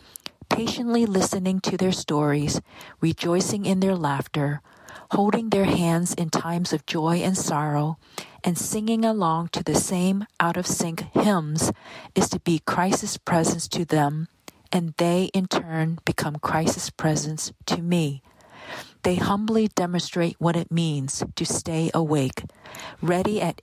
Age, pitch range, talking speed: 40-59, 155-190 Hz, 135 wpm